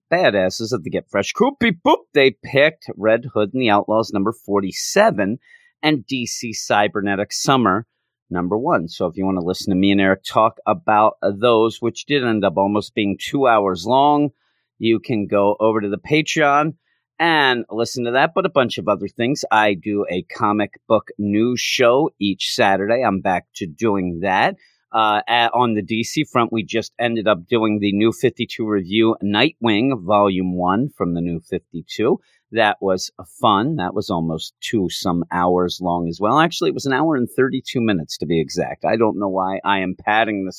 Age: 40-59